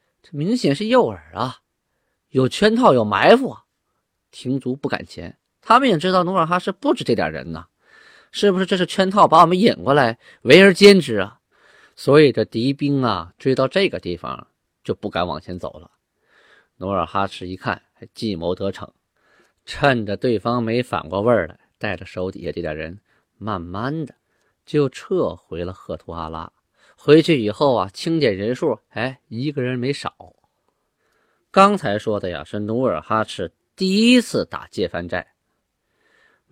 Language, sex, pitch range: Chinese, male, 100-160 Hz